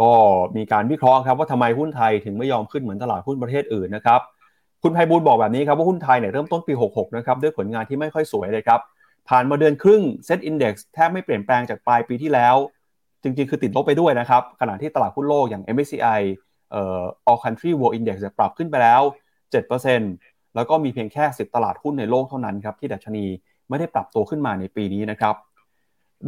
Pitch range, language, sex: 115-155 Hz, Thai, male